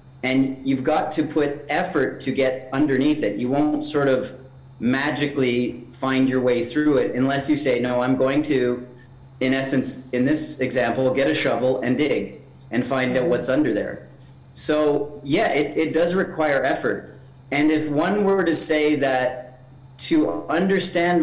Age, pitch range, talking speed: 40-59, 130-150 Hz, 165 wpm